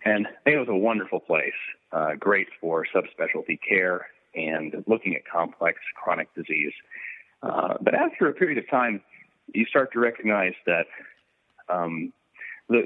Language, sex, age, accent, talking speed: English, male, 40-59, American, 155 wpm